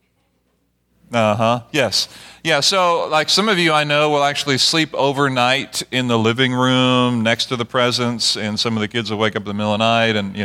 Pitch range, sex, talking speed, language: 115-135 Hz, male, 220 wpm, English